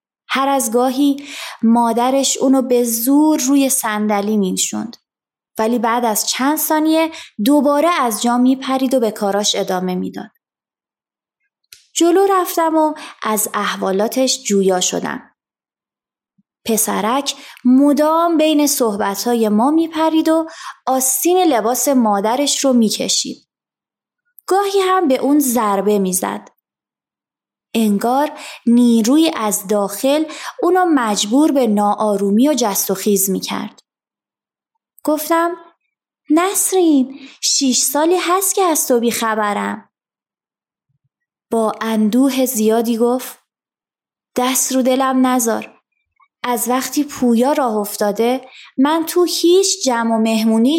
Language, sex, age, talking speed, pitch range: Persian, female, 20-39, 105 wpm, 220-305 Hz